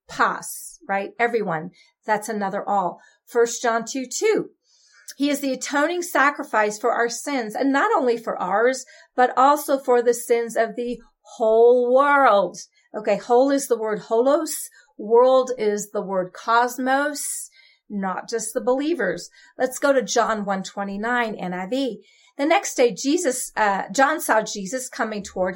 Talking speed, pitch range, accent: 155 wpm, 215-270 Hz, American